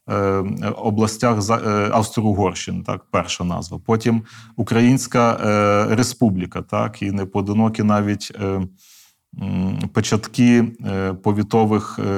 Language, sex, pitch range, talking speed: Ukrainian, male, 105-120 Hz, 75 wpm